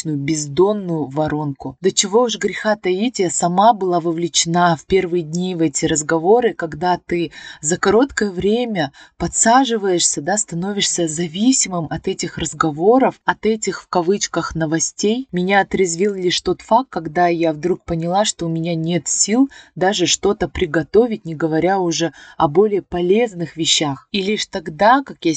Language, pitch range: Russian, 160-195 Hz